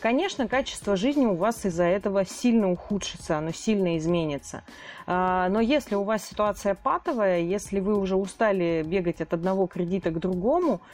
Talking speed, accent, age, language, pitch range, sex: 155 wpm, native, 30-49, Russian, 175-225 Hz, female